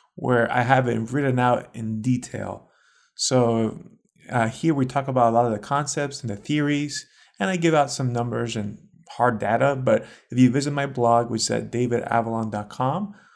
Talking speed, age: 185 wpm, 30-49